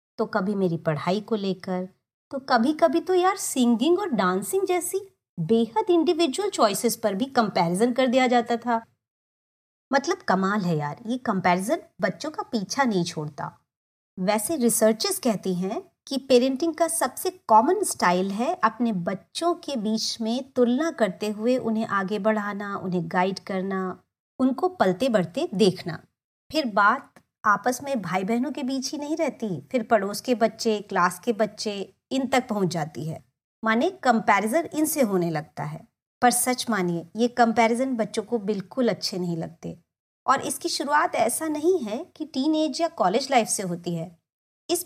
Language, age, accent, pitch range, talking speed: Hindi, 30-49, native, 190-280 Hz, 160 wpm